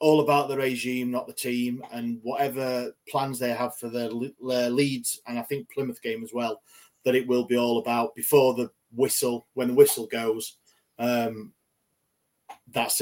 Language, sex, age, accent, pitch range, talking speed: English, male, 30-49, British, 120-130 Hz, 175 wpm